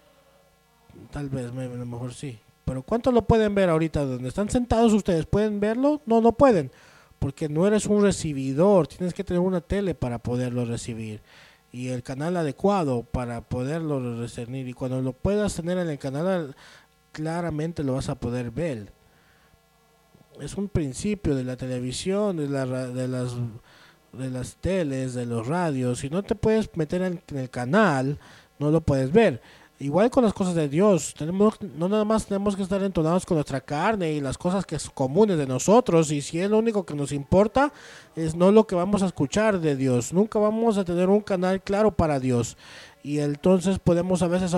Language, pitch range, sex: English, 135-200 Hz, male